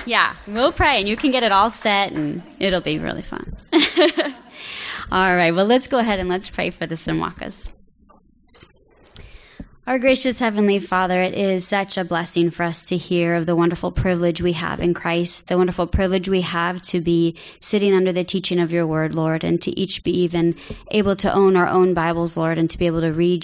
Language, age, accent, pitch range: English, 20-39, American, 170-190 Hz